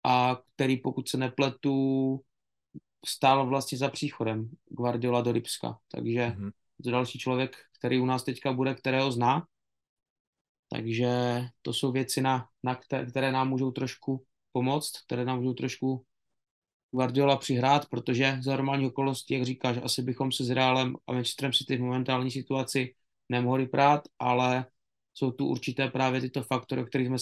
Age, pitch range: 20-39, 125-135 Hz